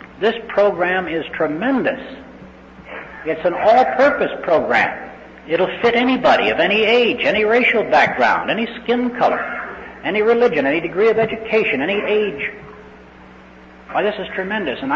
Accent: American